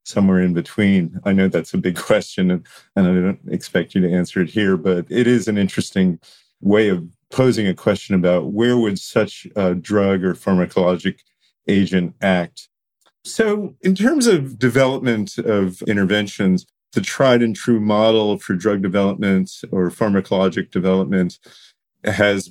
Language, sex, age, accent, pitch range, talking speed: English, male, 40-59, American, 90-105 Hz, 155 wpm